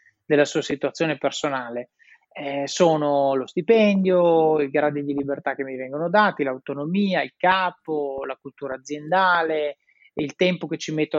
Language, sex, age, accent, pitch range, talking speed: Italian, male, 30-49, native, 145-180 Hz, 145 wpm